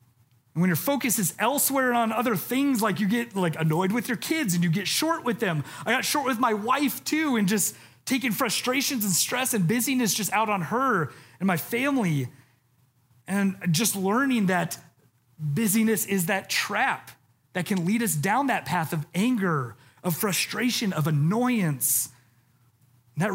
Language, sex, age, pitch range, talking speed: English, male, 30-49, 130-200 Hz, 175 wpm